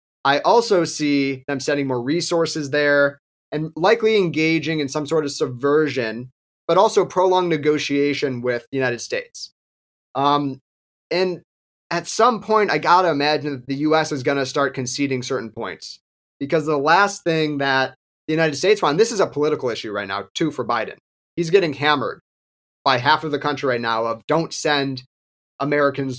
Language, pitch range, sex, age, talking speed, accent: English, 130-160 Hz, male, 30-49, 170 wpm, American